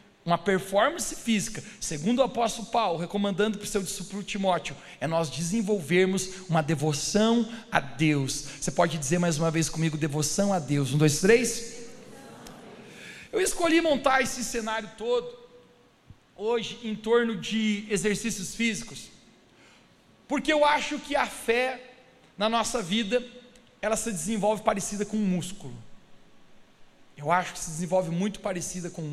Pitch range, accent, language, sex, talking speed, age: 175-225 Hz, Brazilian, Portuguese, male, 145 wpm, 40-59